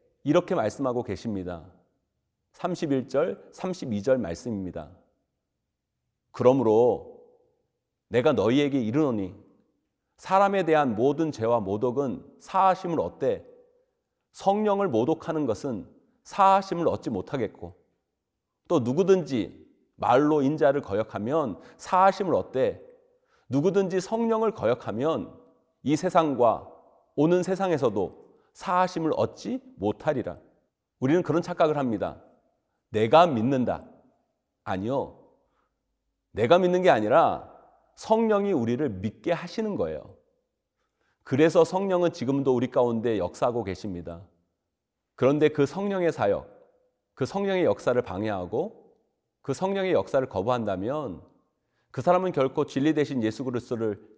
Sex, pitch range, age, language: male, 120-195 Hz, 40-59, Korean